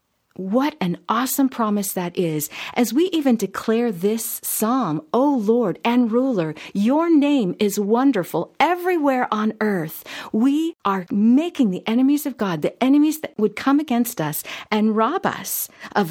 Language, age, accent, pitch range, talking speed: English, 50-69, American, 170-245 Hz, 155 wpm